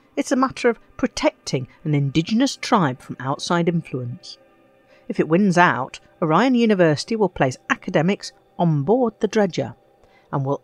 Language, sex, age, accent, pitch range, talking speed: English, female, 50-69, British, 140-215 Hz, 145 wpm